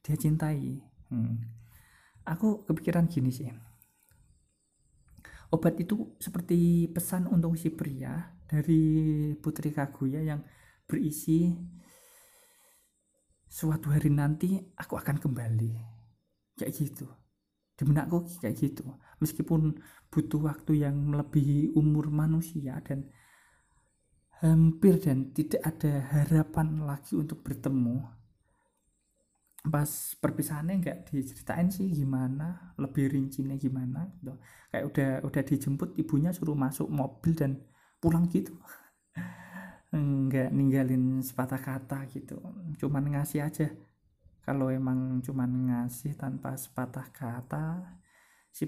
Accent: native